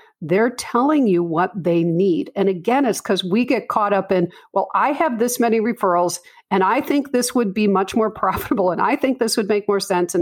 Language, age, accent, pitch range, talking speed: English, 50-69, American, 175-235 Hz, 230 wpm